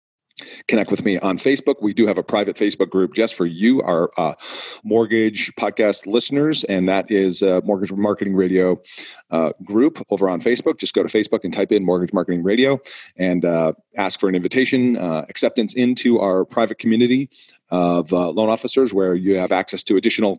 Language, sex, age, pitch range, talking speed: English, male, 40-59, 95-110 Hz, 190 wpm